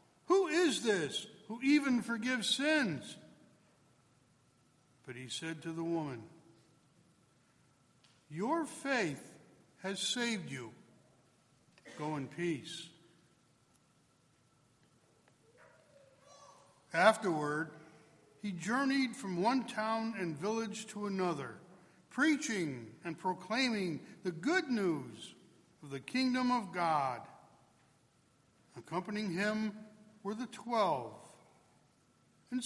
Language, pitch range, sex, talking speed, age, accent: English, 150-235 Hz, male, 90 wpm, 60-79, American